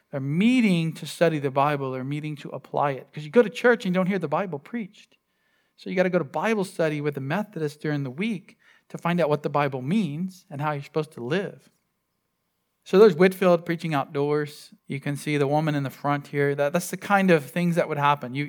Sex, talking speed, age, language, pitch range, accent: male, 240 wpm, 40-59, English, 145-185 Hz, American